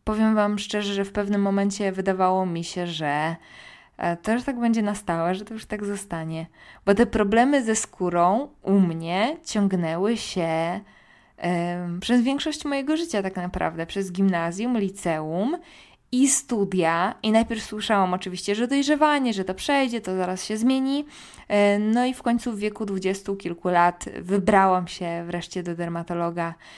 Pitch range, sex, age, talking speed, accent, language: 180-215 Hz, female, 20-39, 155 wpm, native, Polish